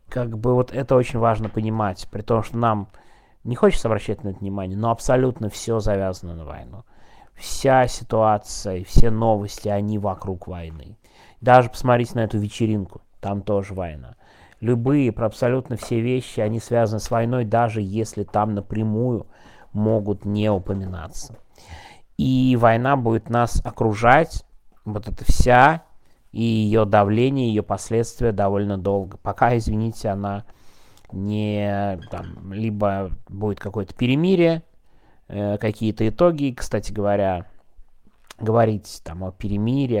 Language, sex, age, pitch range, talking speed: Russian, male, 30-49, 100-115 Hz, 130 wpm